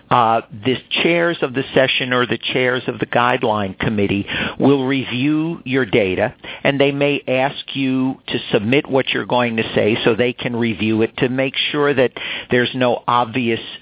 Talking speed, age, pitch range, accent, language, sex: 180 wpm, 50-69, 110-135 Hz, American, English, male